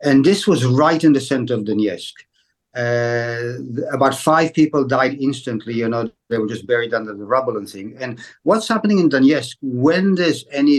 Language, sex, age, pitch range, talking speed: English, male, 60-79, 120-150 Hz, 190 wpm